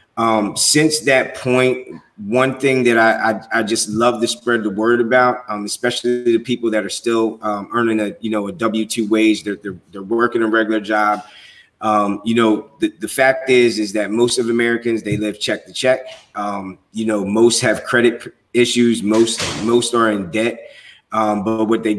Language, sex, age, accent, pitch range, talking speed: English, male, 20-39, American, 110-120 Hz, 200 wpm